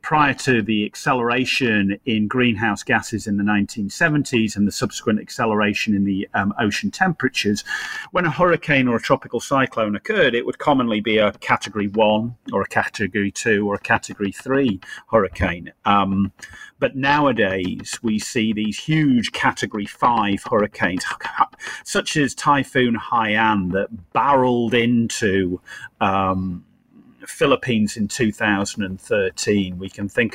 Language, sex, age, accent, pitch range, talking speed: English, male, 40-59, British, 105-140 Hz, 130 wpm